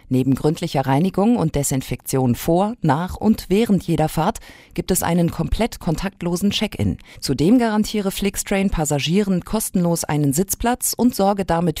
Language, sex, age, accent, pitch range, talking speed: German, female, 50-69, German, 140-200 Hz, 135 wpm